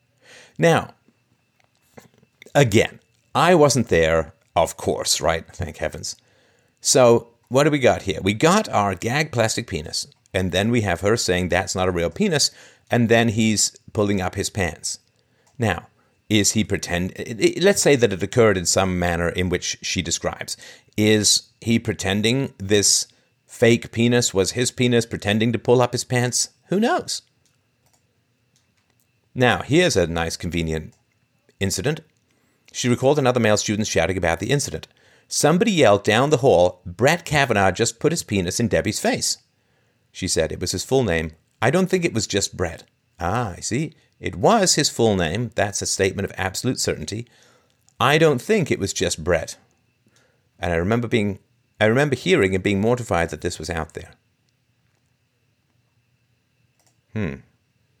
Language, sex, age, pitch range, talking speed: English, male, 50-69, 95-125 Hz, 155 wpm